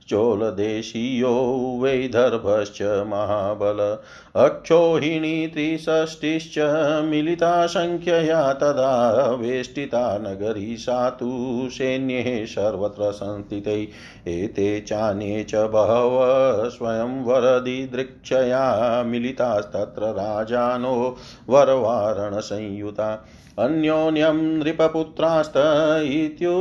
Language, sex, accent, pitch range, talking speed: Hindi, male, native, 110-150 Hz, 40 wpm